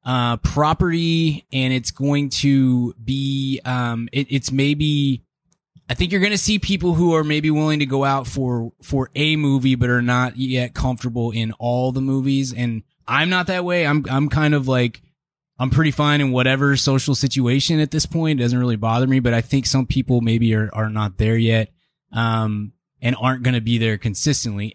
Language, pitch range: English, 120-150 Hz